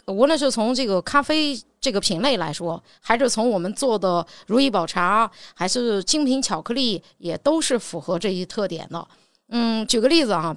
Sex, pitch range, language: female, 185-260 Hz, Chinese